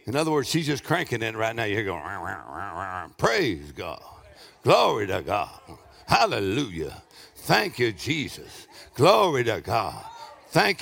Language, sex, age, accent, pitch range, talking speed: English, male, 60-79, American, 195-315 Hz, 135 wpm